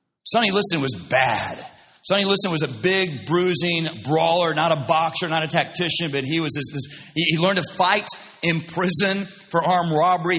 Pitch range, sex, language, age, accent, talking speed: 165-200 Hz, male, English, 40-59, American, 180 wpm